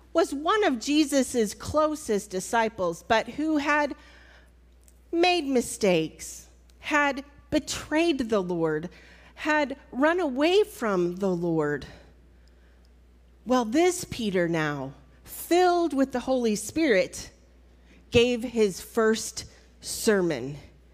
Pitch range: 175-285 Hz